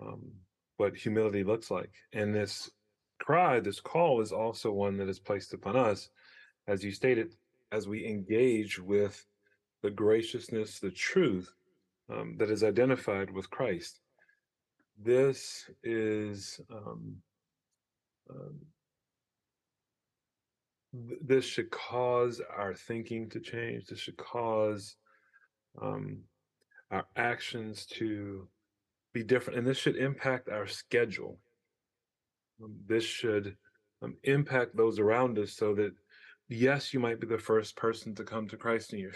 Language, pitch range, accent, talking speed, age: English, 105-120 Hz, American, 125 wpm, 30-49